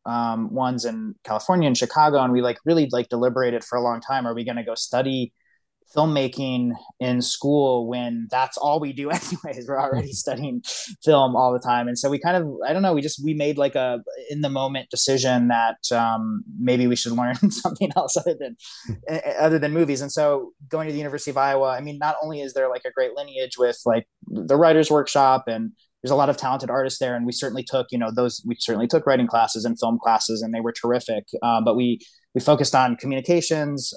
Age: 20-39